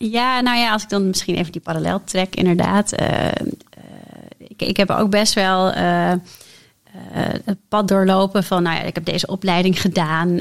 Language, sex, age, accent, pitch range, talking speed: Dutch, female, 30-49, Dutch, 175-200 Hz, 185 wpm